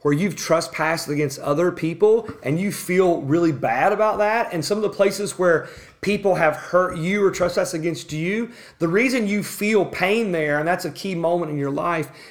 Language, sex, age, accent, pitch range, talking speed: English, male, 30-49, American, 155-200 Hz, 200 wpm